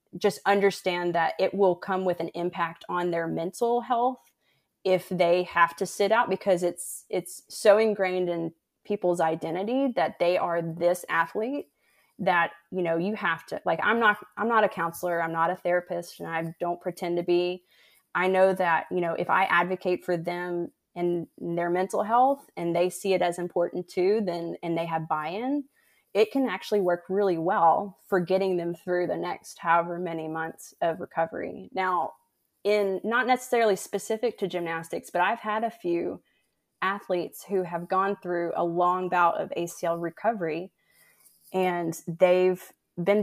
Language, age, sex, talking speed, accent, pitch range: English, 20-39, female, 175 wpm, American, 170-200 Hz